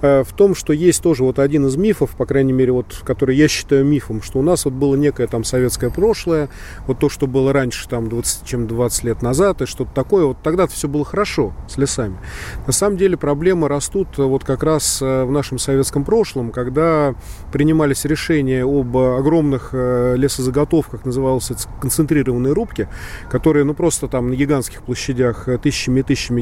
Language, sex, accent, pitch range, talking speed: Russian, male, native, 130-160 Hz, 165 wpm